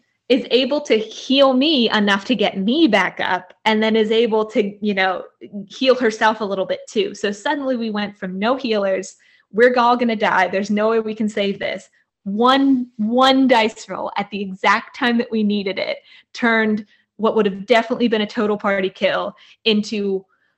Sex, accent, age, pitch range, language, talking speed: female, American, 20-39, 195-250 Hz, English, 190 wpm